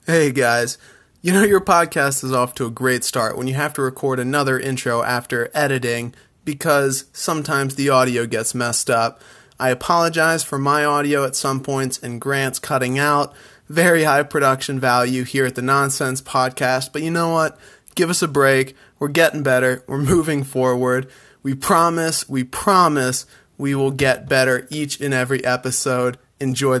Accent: American